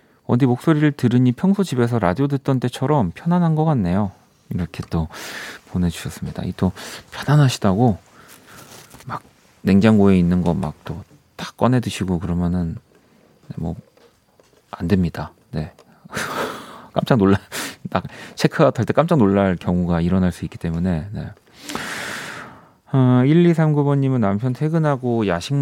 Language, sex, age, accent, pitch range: Korean, male, 40-59, native, 95-130 Hz